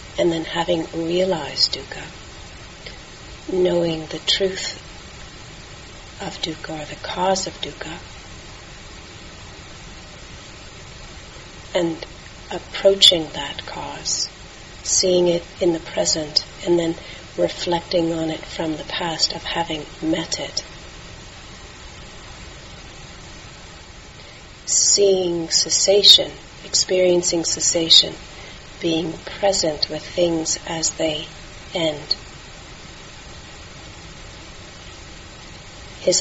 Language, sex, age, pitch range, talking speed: English, female, 40-59, 155-175 Hz, 80 wpm